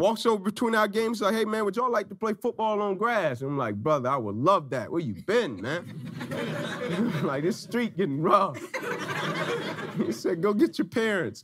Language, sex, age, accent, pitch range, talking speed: English, male, 30-49, American, 115-140 Hz, 205 wpm